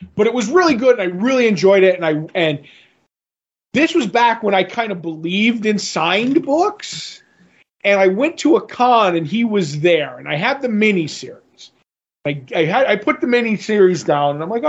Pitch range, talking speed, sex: 170-220 Hz, 215 wpm, male